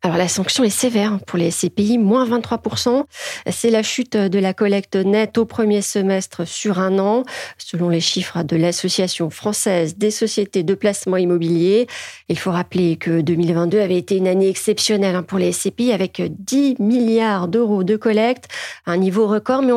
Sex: female